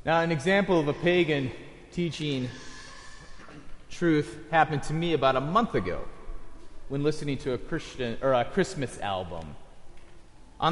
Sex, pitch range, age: male, 125-160 Hz, 30-49